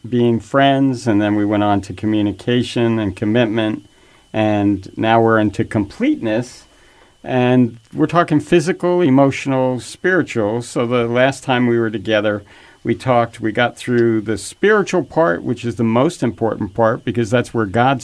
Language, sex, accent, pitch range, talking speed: English, male, American, 110-135 Hz, 155 wpm